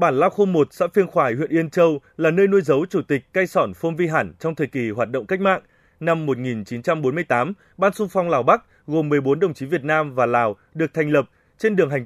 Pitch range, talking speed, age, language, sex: 135-175 Hz, 245 wpm, 20-39, Vietnamese, male